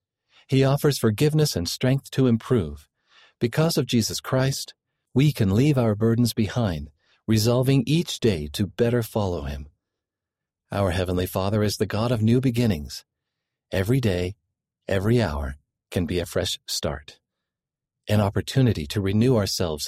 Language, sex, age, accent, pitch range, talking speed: English, male, 50-69, American, 95-130 Hz, 140 wpm